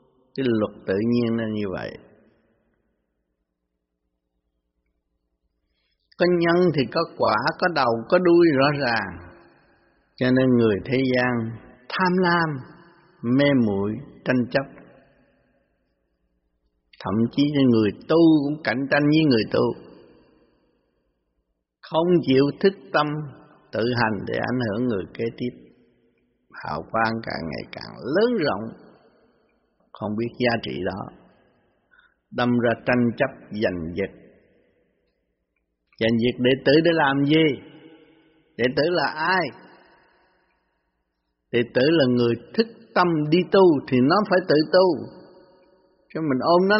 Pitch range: 95-155 Hz